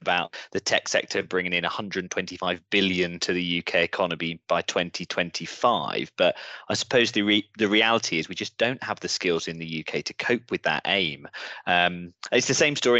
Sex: male